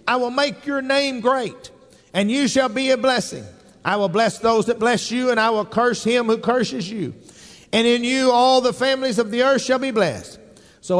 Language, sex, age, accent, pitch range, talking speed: English, male, 50-69, American, 210-260 Hz, 220 wpm